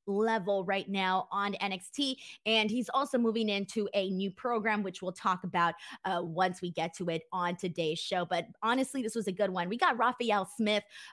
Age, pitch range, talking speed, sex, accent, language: 20-39, 195-270 Hz, 200 wpm, female, American, English